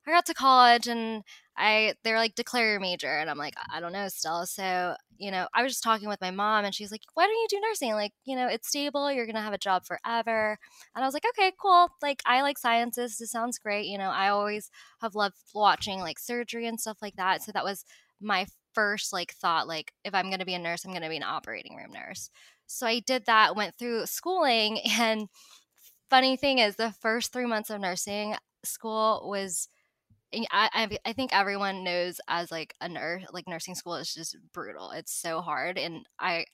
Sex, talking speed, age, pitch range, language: female, 225 wpm, 20-39, 185-235 Hz, English